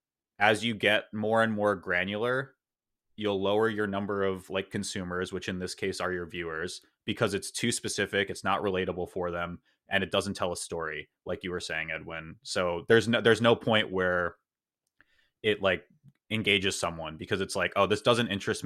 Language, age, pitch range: English, 20-39, 90-105 Hz